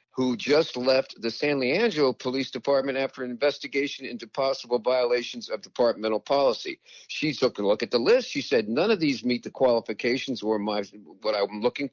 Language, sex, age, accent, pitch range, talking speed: English, male, 50-69, American, 125-175 Hz, 185 wpm